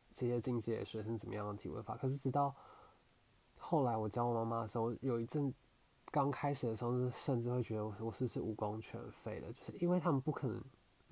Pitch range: 110-125 Hz